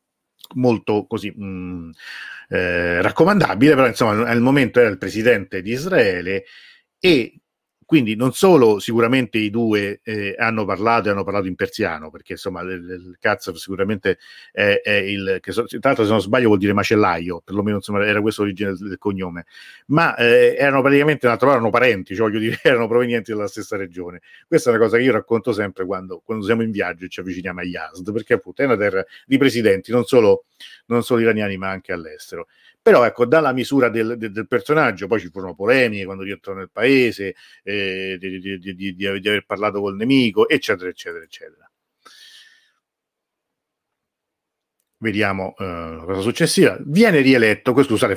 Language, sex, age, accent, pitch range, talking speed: Italian, male, 50-69, native, 100-125 Hz, 170 wpm